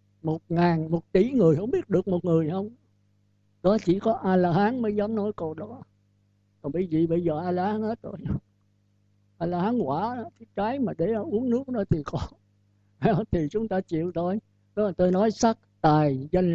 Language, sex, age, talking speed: Vietnamese, male, 60-79, 180 wpm